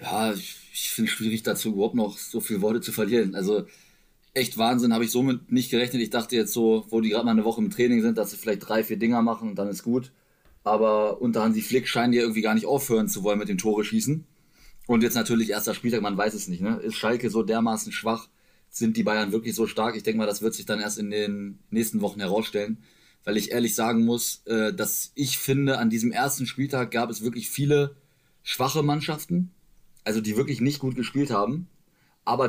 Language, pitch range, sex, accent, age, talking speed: German, 115-150 Hz, male, German, 20-39, 225 wpm